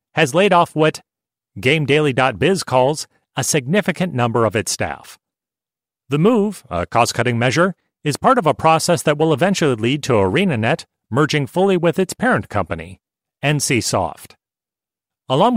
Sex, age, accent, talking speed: male, 40-59, American, 140 wpm